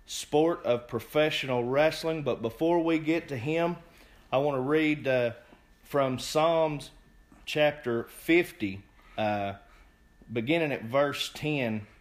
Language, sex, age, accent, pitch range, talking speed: English, male, 30-49, American, 110-145 Hz, 120 wpm